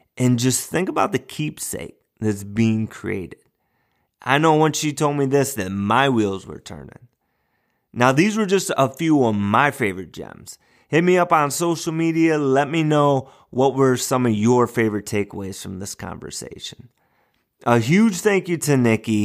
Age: 30-49